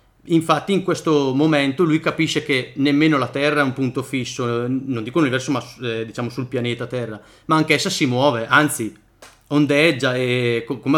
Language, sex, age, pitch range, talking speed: Italian, male, 30-49, 120-145 Hz, 180 wpm